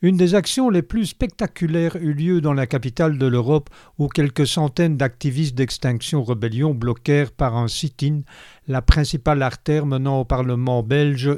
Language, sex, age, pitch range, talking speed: French, male, 50-69, 130-155 Hz, 160 wpm